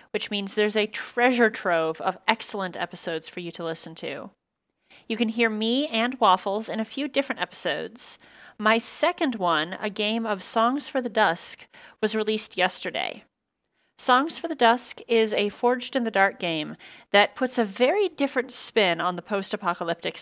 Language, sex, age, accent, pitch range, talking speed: English, female, 30-49, American, 170-225 Hz, 165 wpm